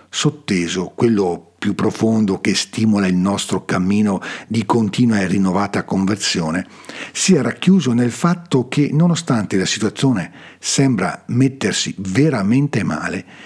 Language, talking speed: Italian, 120 wpm